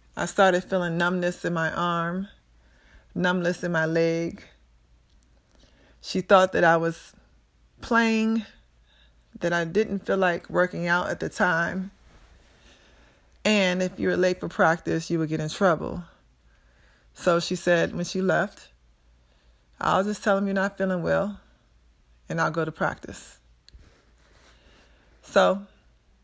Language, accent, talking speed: English, American, 135 wpm